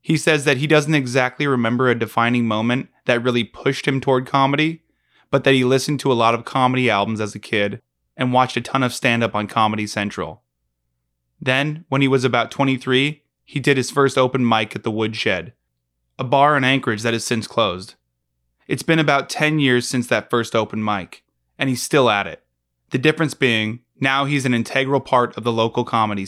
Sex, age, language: male, 20-39, English